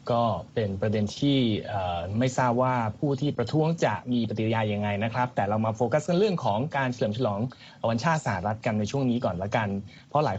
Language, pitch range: Thai, 115-145 Hz